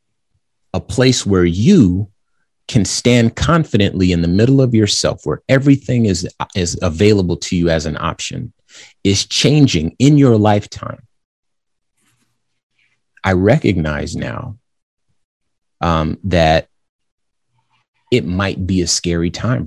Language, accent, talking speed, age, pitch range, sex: English, American, 115 wpm, 30-49, 90-110 Hz, male